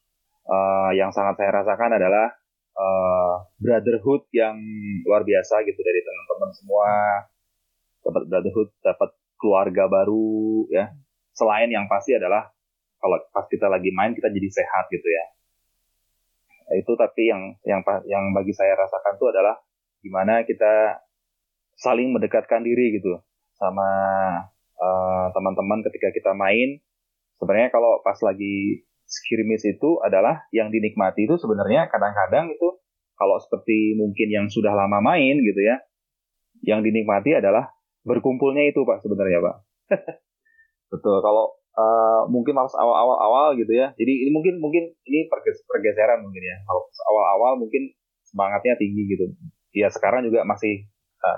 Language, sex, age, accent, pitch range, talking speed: Indonesian, male, 20-39, native, 95-140 Hz, 135 wpm